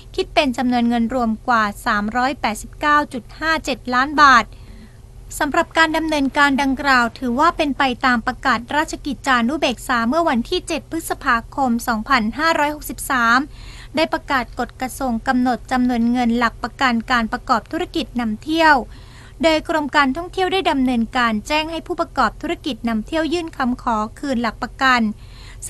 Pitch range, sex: 245-315 Hz, female